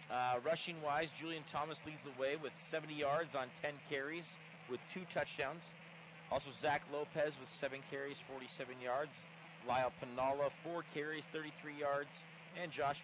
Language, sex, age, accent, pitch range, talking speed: English, male, 40-59, American, 135-170 Hz, 145 wpm